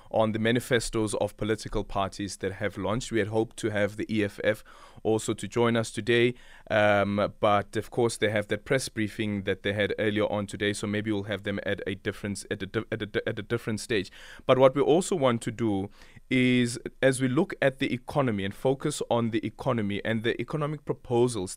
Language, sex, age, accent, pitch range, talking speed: English, male, 20-39, South African, 100-120 Hz, 210 wpm